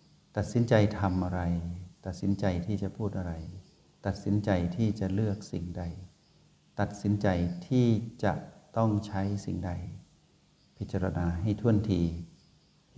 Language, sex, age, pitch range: Thai, male, 60-79, 90-110 Hz